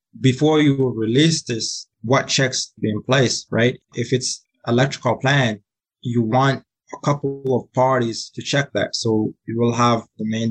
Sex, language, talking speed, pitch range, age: male, English, 165 wpm, 110-130 Hz, 20-39